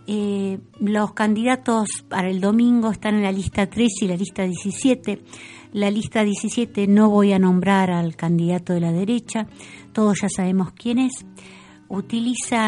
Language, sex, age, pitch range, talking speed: Spanish, female, 50-69, 175-210 Hz, 155 wpm